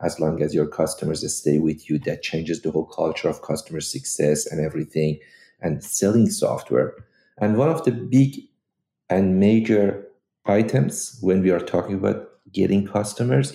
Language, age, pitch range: English, 50-69, 80-110 Hz